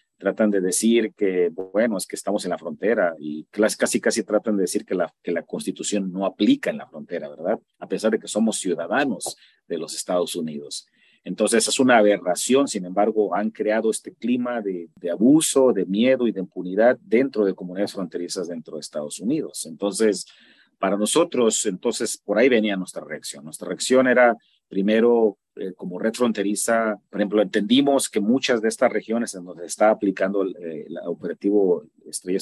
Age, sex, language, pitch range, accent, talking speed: 40-59, male, English, 95-120 Hz, Mexican, 180 wpm